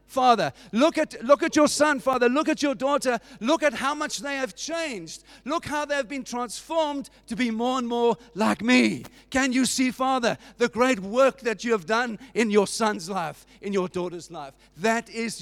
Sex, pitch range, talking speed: male, 185-245 Hz, 205 wpm